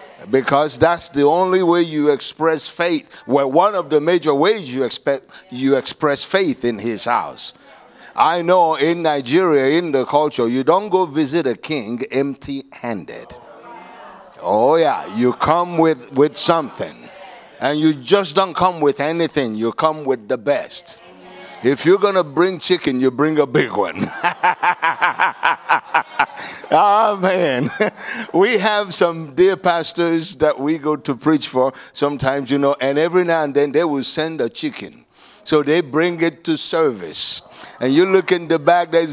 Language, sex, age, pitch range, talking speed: English, male, 60-79, 150-195 Hz, 160 wpm